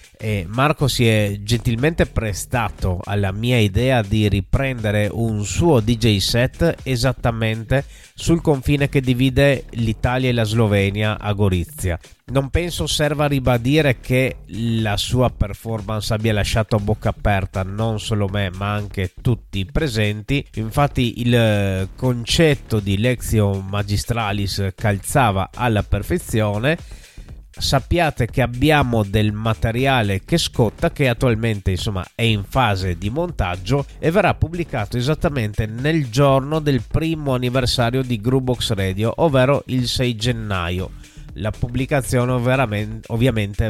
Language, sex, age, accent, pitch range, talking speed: Italian, male, 30-49, native, 105-130 Hz, 120 wpm